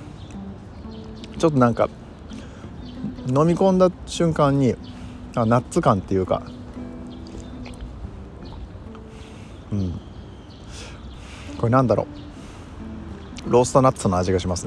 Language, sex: Japanese, male